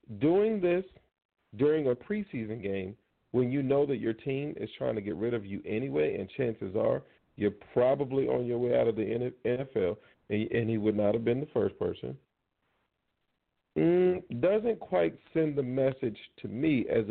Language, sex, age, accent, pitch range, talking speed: English, male, 40-59, American, 110-155 Hz, 170 wpm